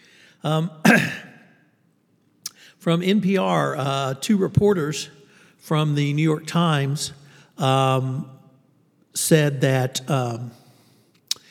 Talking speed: 80 wpm